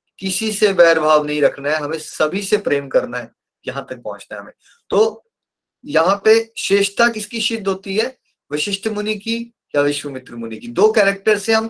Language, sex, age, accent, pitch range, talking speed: Hindi, male, 30-49, native, 175-230 Hz, 190 wpm